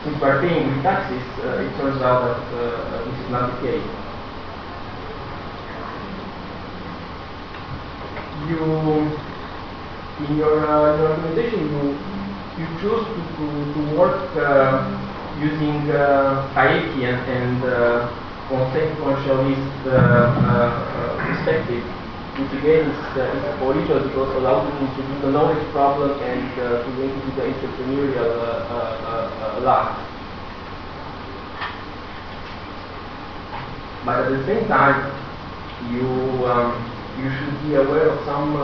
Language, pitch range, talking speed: Italian, 115-145 Hz, 120 wpm